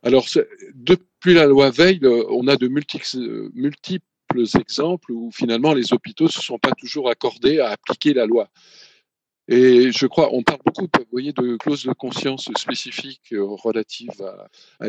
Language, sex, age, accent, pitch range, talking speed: French, male, 50-69, French, 120-150 Hz, 165 wpm